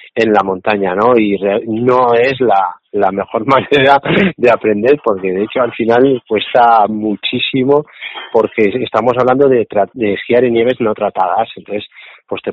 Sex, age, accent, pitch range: male, 30-49, Spanish, 110-135 Hz